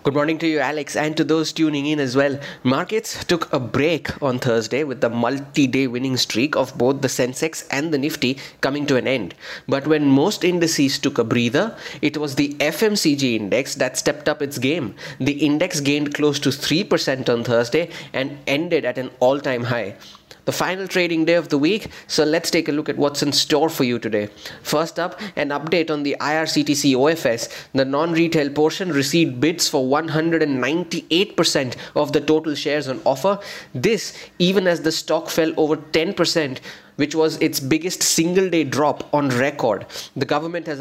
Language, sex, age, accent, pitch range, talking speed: English, male, 30-49, Indian, 140-165 Hz, 185 wpm